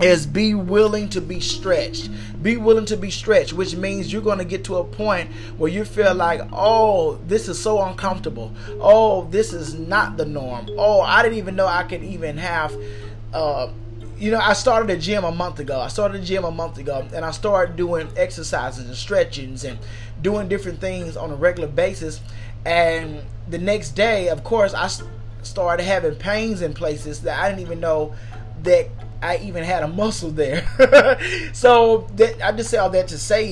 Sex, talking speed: male, 195 wpm